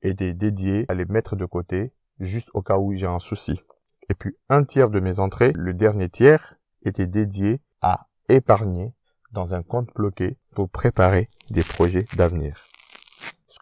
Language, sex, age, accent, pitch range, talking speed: French, male, 20-39, French, 95-115 Hz, 170 wpm